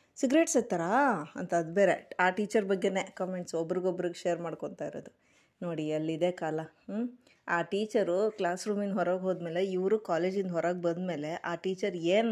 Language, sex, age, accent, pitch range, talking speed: Kannada, female, 20-39, native, 175-225 Hz, 140 wpm